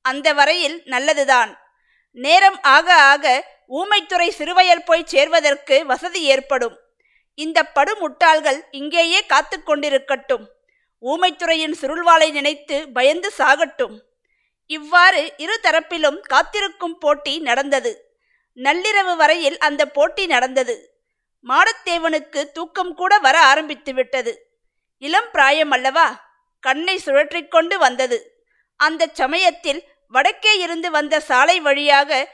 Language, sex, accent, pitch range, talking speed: Tamil, female, native, 285-355 Hz, 95 wpm